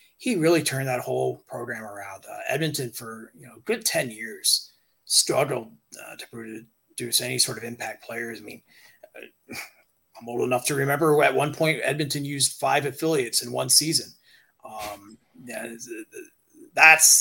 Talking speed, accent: 155 wpm, American